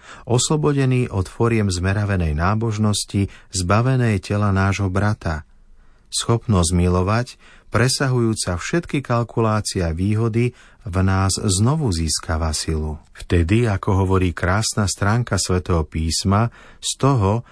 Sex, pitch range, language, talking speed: male, 90-115 Hz, Slovak, 100 wpm